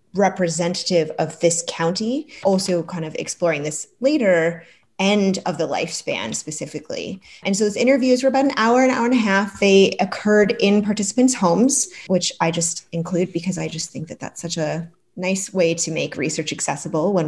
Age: 20-39